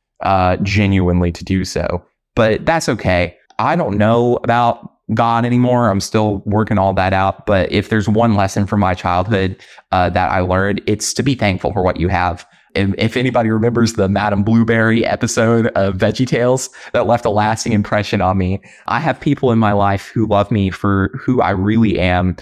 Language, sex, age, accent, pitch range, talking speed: English, male, 20-39, American, 95-115 Hz, 195 wpm